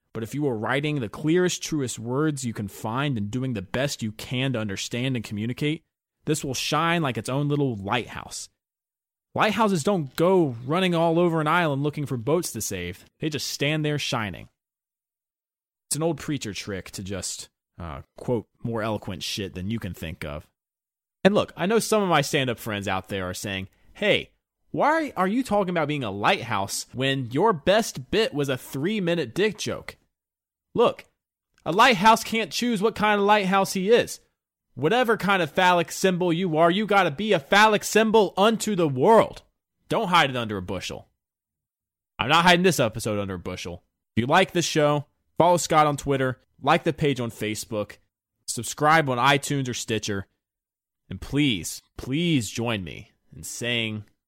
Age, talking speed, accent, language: 30-49, 180 wpm, American, English